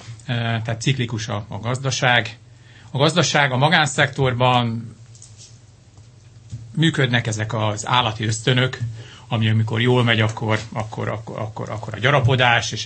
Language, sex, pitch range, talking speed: Hungarian, male, 110-125 Hz, 105 wpm